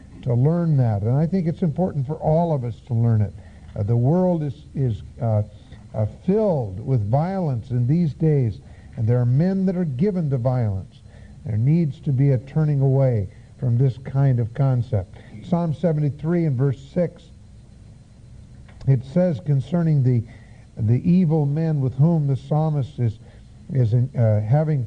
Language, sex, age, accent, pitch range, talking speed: English, male, 50-69, American, 115-155 Hz, 165 wpm